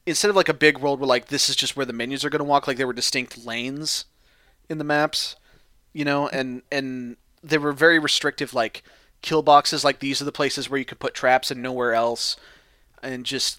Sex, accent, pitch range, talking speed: male, American, 125-150 Hz, 225 wpm